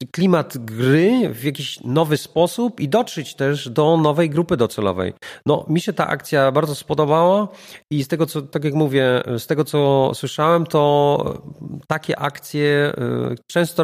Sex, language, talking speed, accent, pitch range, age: male, Polish, 150 wpm, native, 130-180 Hz, 40-59